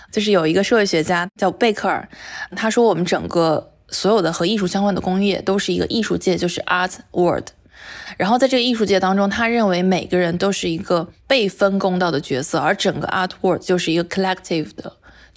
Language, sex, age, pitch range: Chinese, female, 20-39, 175-215 Hz